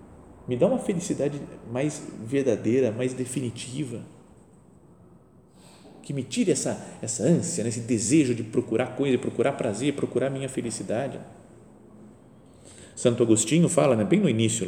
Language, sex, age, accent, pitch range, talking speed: Portuguese, male, 40-59, Brazilian, 110-150 Hz, 140 wpm